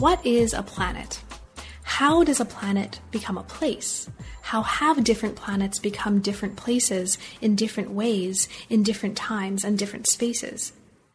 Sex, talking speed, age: female, 145 wpm, 30-49